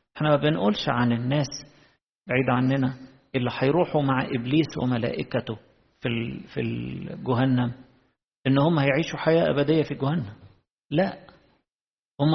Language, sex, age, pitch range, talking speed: Arabic, male, 50-69, 125-155 Hz, 110 wpm